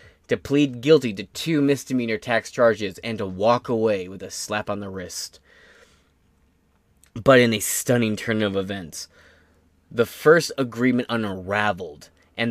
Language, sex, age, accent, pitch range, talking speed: English, male, 20-39, American, 100-125 Hz, 145 wpm